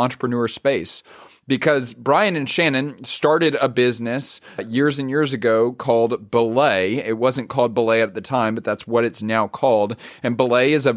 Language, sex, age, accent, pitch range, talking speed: English, male, 40-59, American, 115-145 Hz, 175 wpm